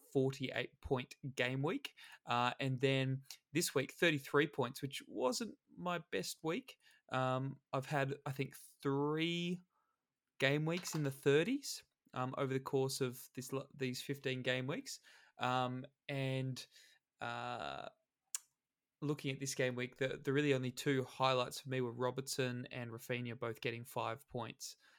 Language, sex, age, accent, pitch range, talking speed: English, male, 20-39, Australian, 125-140 Hz, 145 wpm